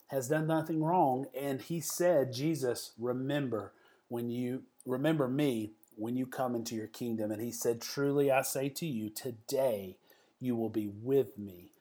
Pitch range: 115-135 Hz